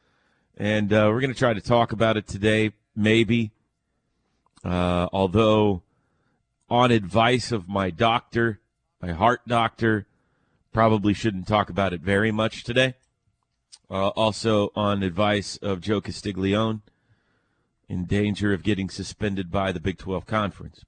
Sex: male